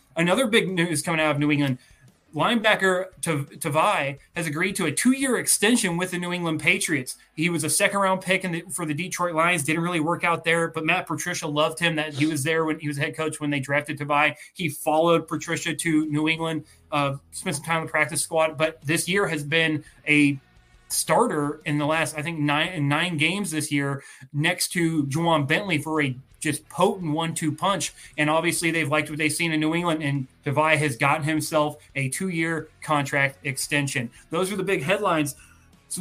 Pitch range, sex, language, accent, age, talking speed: 145-170 Hz, male, English, American, 30-49, 200 wpm